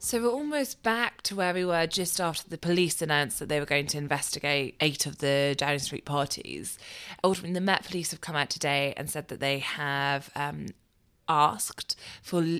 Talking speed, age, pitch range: 195 wpm, 20-39, 140-165 Hz